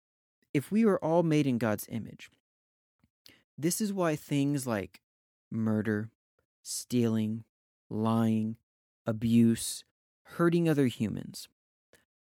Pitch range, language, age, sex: 110-145 Hz, English, 30-49, male